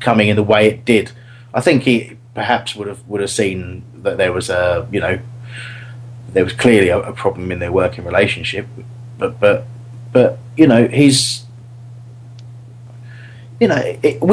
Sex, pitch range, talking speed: male, 115-135 Hz, 165 wpm